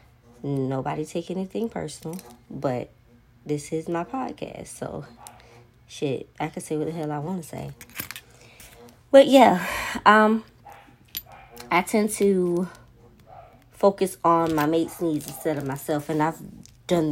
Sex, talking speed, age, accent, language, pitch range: female, 135 wpm, 20-39, American, English, 135-170 Hz